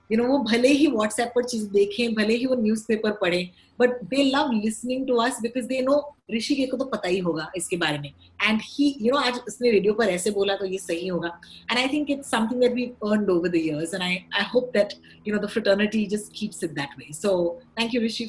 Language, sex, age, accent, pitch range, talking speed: Hindi, female, 30-49, native, 195-275 Hz, 245 wpm